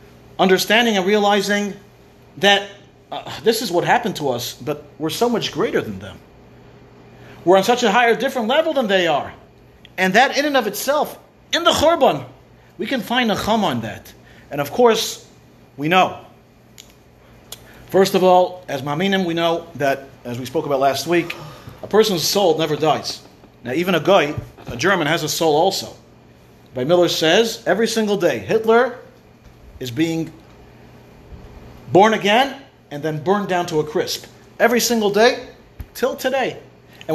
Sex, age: male, 40-59